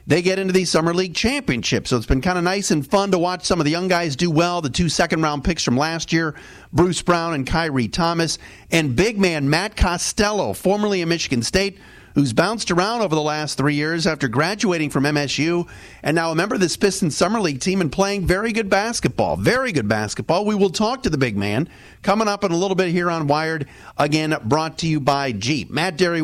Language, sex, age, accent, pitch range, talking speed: English, male, 40-59, American, 150-185 Hz, 230 wpm